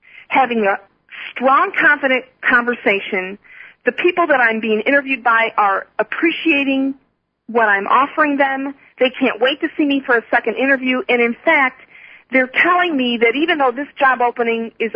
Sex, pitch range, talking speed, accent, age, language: female, 225-290 Hz, 165 wpm, American, 40-59, English